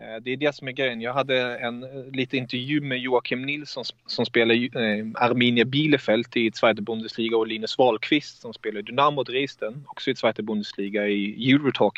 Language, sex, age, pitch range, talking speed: Swedish, male, 30-49, 110-130 Hz, 165 wpm